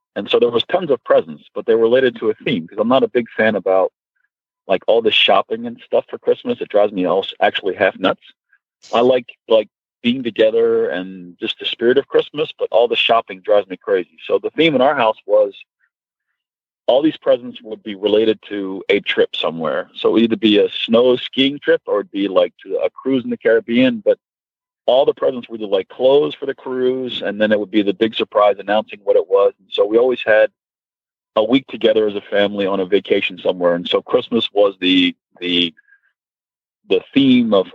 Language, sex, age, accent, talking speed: English, male, 40-59, American, 220 wpm